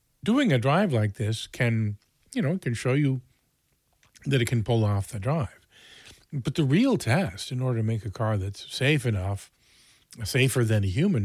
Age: 40-59